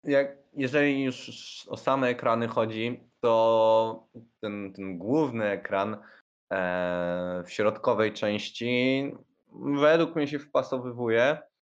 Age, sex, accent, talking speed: 20-39, male, native, 95 wpm